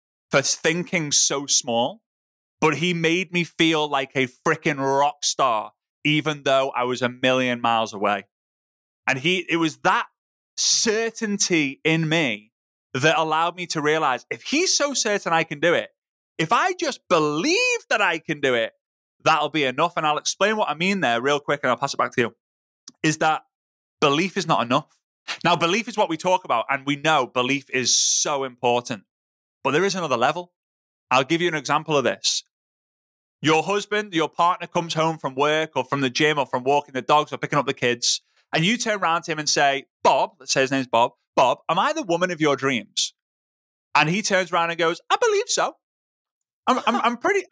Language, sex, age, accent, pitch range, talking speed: English, male, 30-49, British, 135-195 Hz, 200 wpm